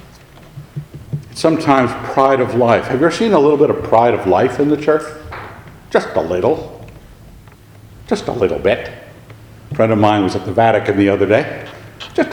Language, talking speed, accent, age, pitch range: English, 180 wpm, American, 60-79, 125-195 Hz